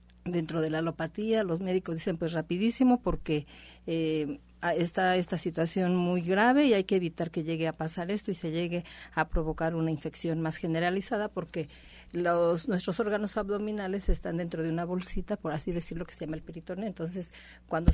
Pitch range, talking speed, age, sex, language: 170-205 Hz, 180 wpm, 50-69, female, Spanish